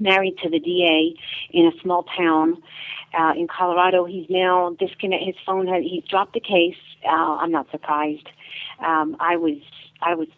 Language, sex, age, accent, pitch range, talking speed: English, female, 50-69, American, 165-195 Hz, 175 wpm